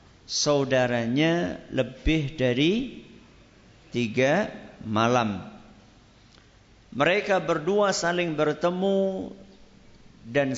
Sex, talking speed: male, 55 wpm